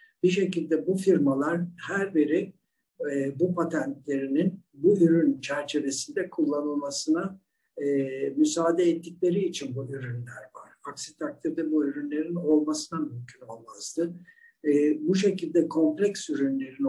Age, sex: 60-79, male